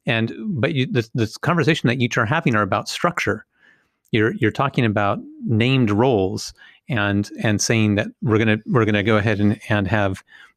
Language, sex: English, male